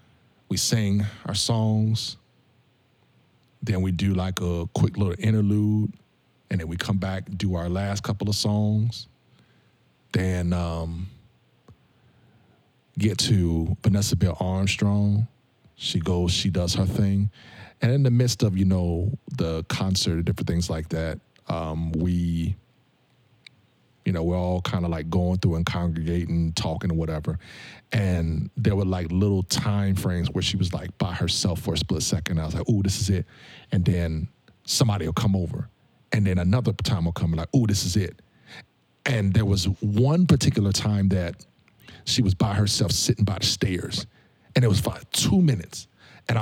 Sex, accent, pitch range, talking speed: male, American, 90-115 Hz, 170 wpm